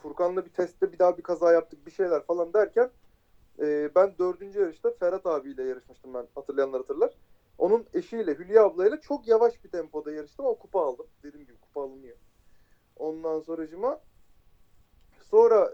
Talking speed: 160 wpm